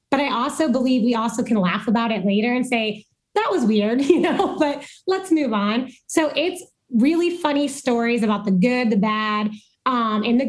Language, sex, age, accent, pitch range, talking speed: English, female, 20-39, American, 220-270 Hz, 200 wpm